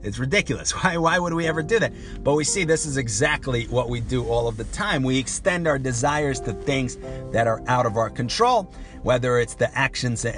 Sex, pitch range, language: male, 120-150 Hz, English